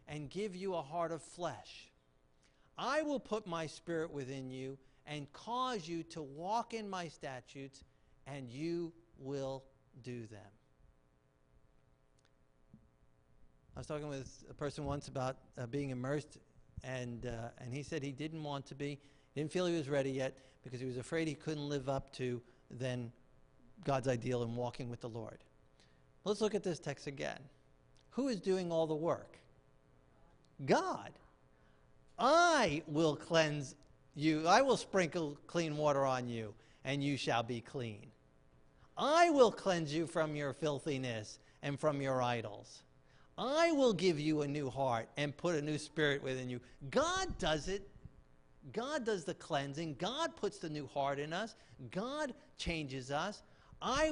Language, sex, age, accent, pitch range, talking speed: English, male, 50-69, American, 125-165 Hz, 160 wpm